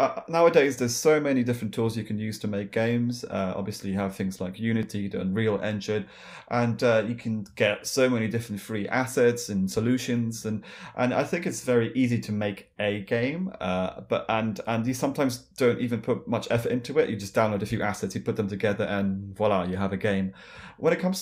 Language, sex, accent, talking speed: English, male, British, 220 wpm